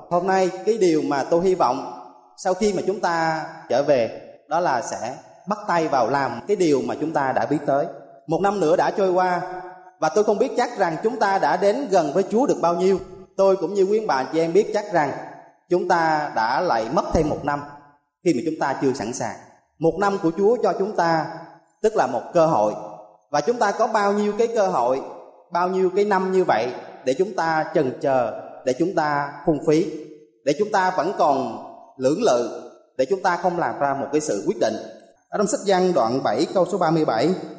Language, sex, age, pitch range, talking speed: Vietnamese, male, 30-49, 150-195 Hz, 225 wpm